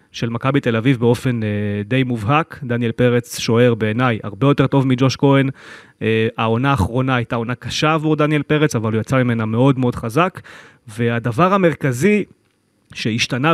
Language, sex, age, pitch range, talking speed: Hebrew, male, 30-49, 115-140 Hz, 150 wpm